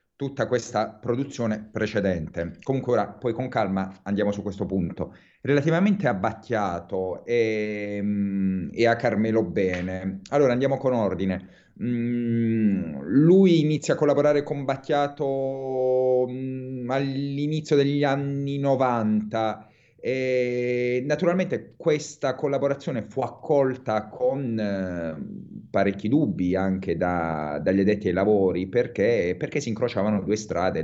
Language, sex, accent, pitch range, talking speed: Italian, male, native, 95-130 Hz, 110 wpm